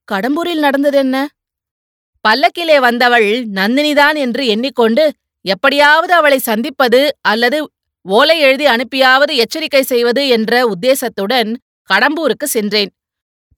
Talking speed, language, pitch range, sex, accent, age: 95 wpm, Tamil, 235-285 Hz, female, native, 30-49